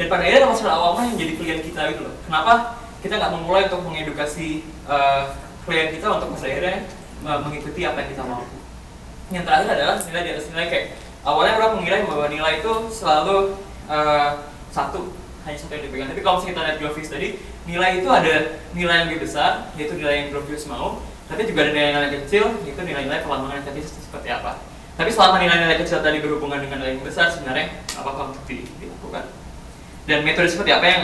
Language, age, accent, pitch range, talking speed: Indonesian, 20-39, native, 145-175 Hz, 195 wpm